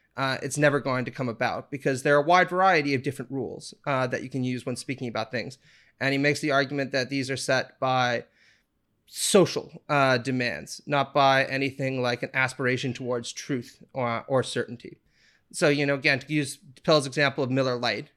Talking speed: 200 wpm